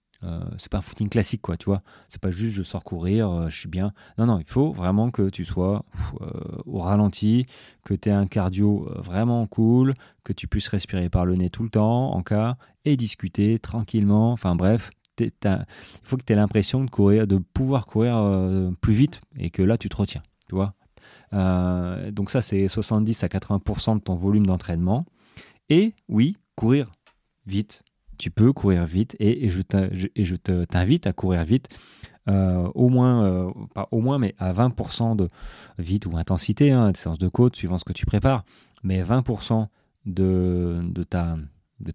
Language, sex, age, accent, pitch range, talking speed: French, male, 30-49, French, 90-115 Hz, 190 wpm